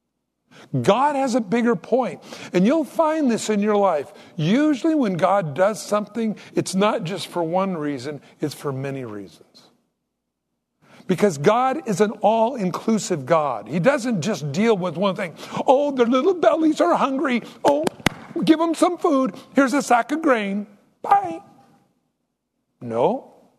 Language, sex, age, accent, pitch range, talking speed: English, male, 60-79, American, 175-250 Hz, 150 wpm